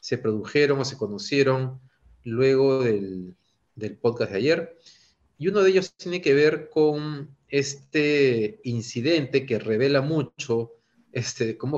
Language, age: Spanish, 40-59